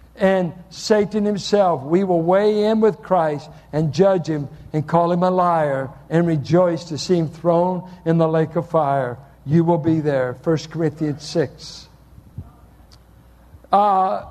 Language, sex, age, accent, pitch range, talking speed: English, male, 60-79, American, 160-210 Hz, 150 wpm